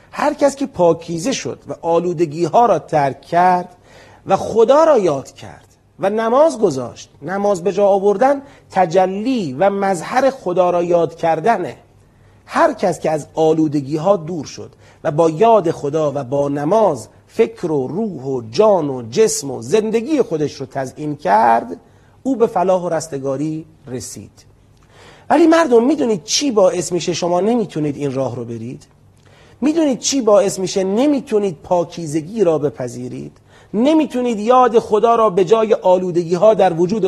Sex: male